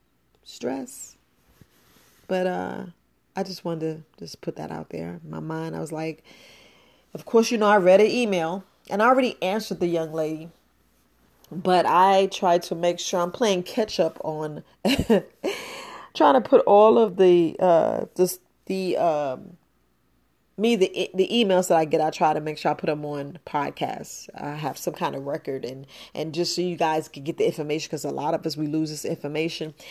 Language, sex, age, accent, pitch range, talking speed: English, female, 30-49, American, 155-195 Hz, 190 wpm